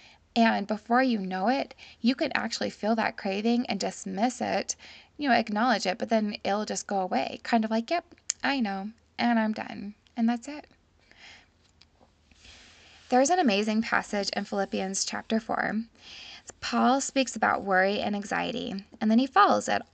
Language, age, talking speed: English, 20-39, 165 wpm